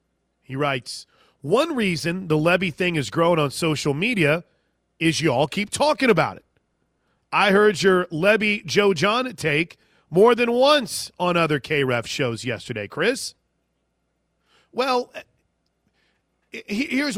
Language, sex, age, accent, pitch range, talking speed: English, male, 40-59, American, 145-185 Hz, 125 wpm